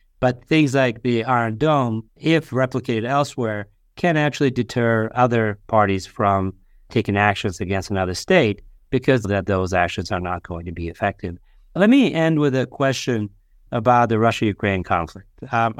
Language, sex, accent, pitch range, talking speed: English, male, American, 105-130 Hz, 150 wpm